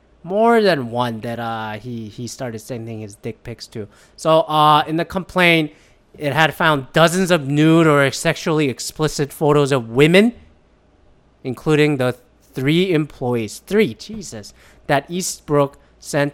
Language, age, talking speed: English, 30-49, 145 wpm